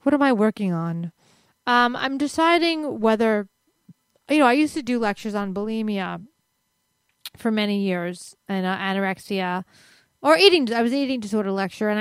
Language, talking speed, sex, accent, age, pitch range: English, 165 wpm, female, American, 30-49, 190-230 Hz